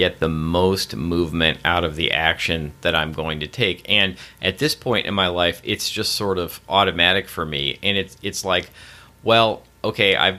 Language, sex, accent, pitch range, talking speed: English, male, American, 80-95 Hz, 195 wpm